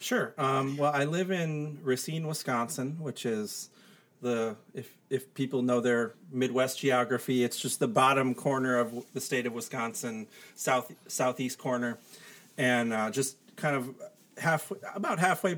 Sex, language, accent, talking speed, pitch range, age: male, English, American, 150 wpm, 120-150 Hz, 30-49